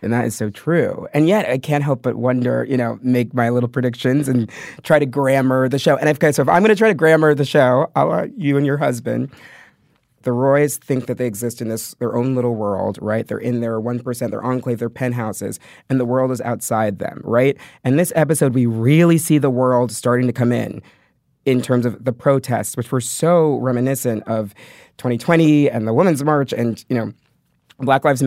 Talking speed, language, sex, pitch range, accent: 220 wpm, English, male, 120-150 Hz, American